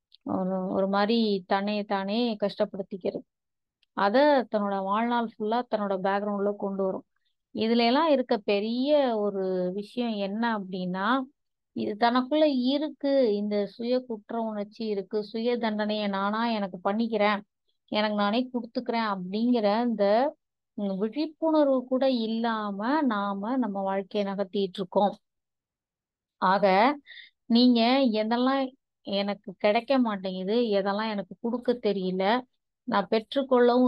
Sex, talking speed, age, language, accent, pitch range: female, 85 wpm, 20-39, Tamil, native, 200-240 Hz